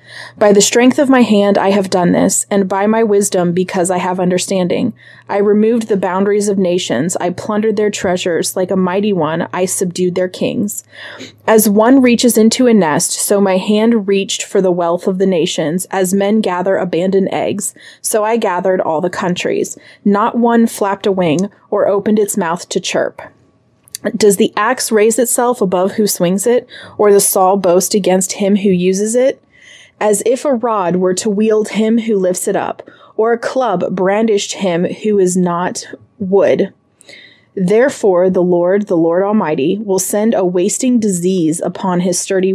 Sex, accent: female, American